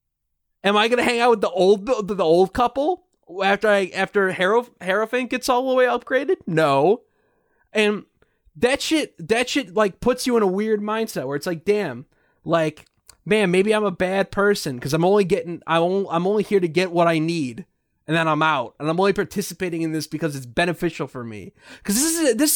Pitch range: 165-220 Hz